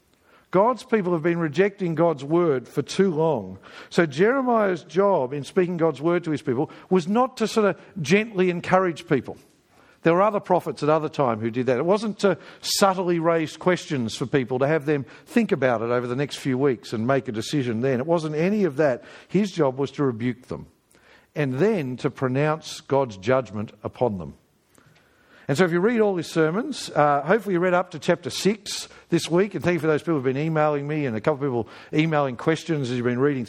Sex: male